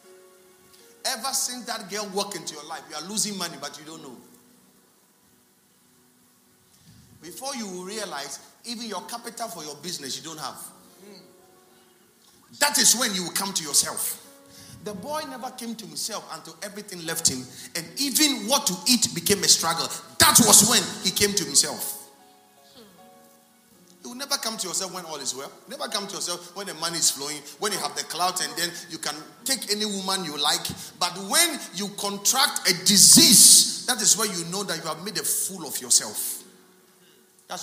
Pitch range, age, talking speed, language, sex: 170-230 Hz, 40-59, 180 wpm, English, male